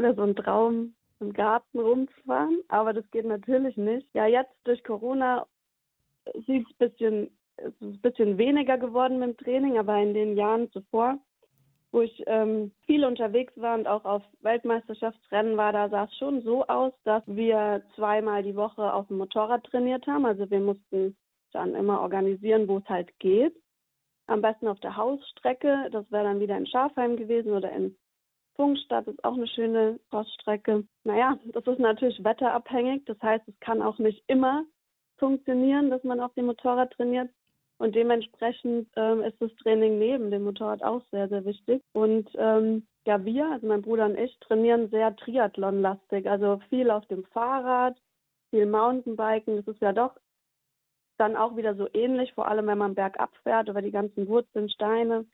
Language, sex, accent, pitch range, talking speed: German, female, German, 210-245 Hz, 175 wpm